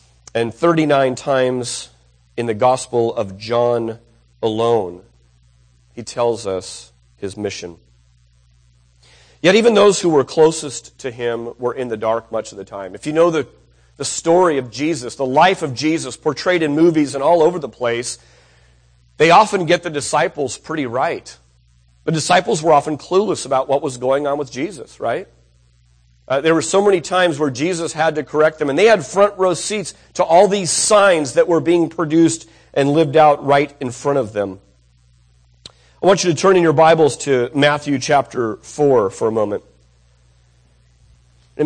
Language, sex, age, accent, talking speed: English, male, 40-59, American, 175 wpm